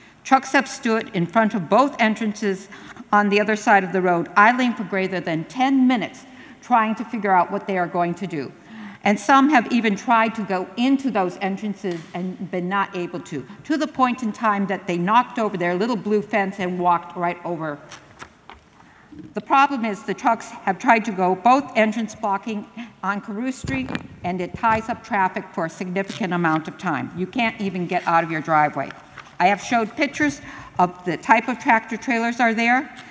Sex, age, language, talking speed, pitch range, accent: female, 50-69, English, 200 wpm, 180-235 Hz, American